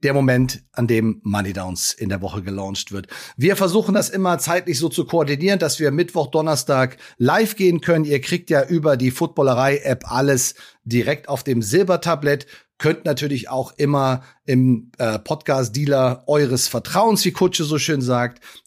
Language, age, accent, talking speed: German, 40-59, German, 160 wpm